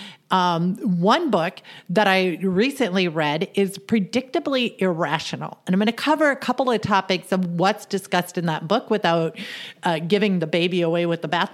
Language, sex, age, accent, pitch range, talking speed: English, female, 50-69, American, 175-235 Hz, 175 wpm